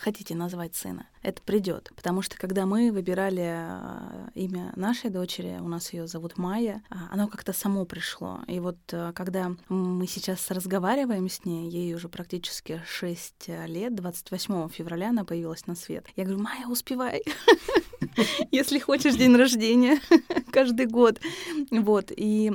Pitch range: 185-230 Hz